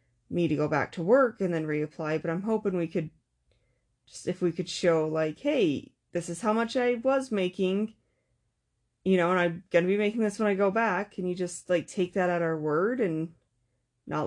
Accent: American